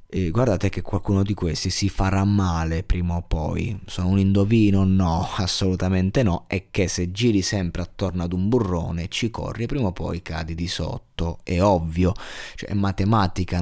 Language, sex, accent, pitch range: Italian, male, native, 90-105 Hz